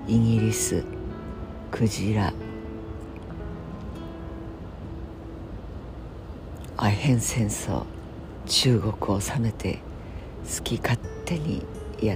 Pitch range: 85-115 Hz